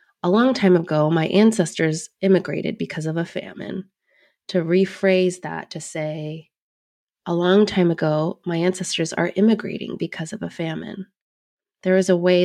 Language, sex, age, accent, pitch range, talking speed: English, female, 20-39, American, 160-185 Hz, 155 wpm